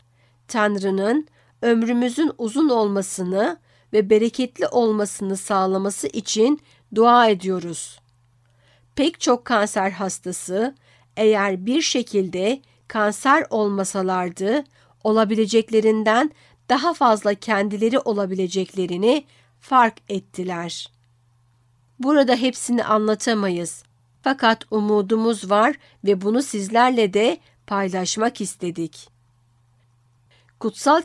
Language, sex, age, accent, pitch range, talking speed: Turkish, female, 50-69, native, 185-235 Hz, 75 wpm